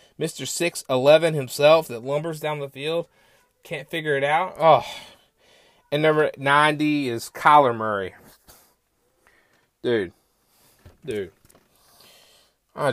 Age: 20-39